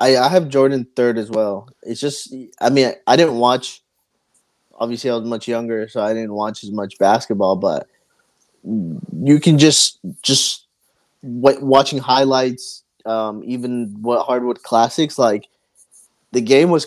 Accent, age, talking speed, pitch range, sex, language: American, 20-39, 145 wpm, 120-150 Hz, male, English